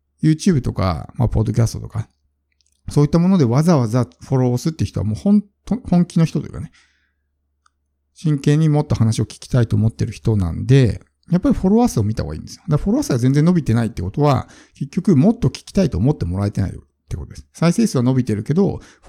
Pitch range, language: 105-160 Hz, Japanese